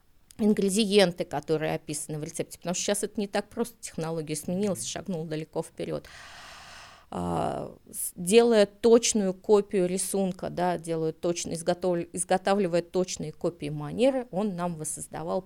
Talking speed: 115 wpm